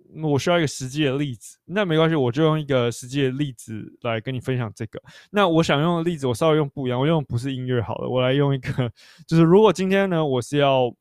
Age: 20-39